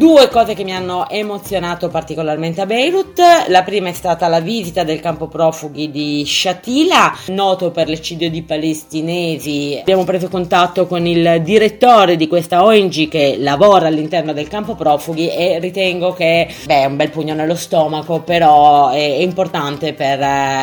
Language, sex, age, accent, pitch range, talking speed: Italian, female, 30-49, native, 155-195 Hz, 155 wpm